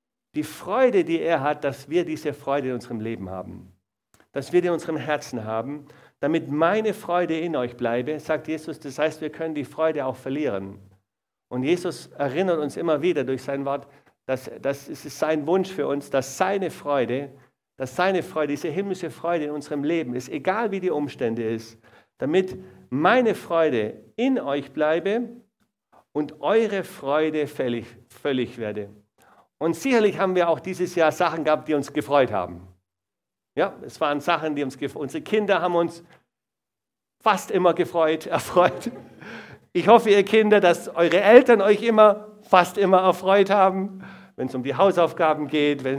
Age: 50-69